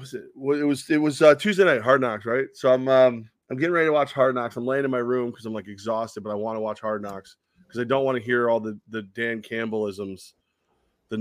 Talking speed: 270 wpm